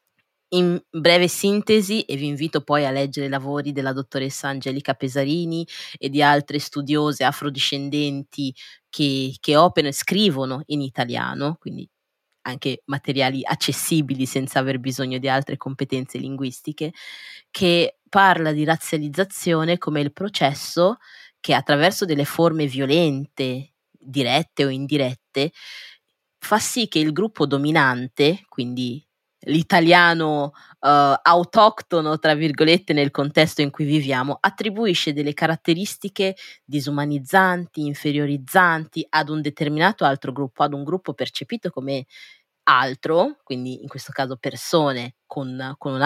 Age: 20-39